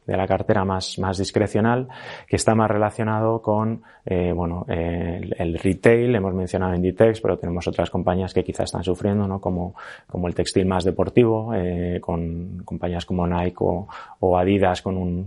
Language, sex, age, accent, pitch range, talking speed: Spanish, male, 20-39, Spanish, 90-105 Hz, 175 wpm